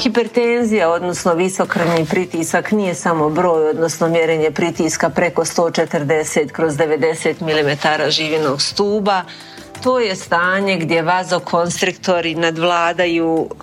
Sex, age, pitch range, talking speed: female, 40-59, 165-200 Hz, 95 wpm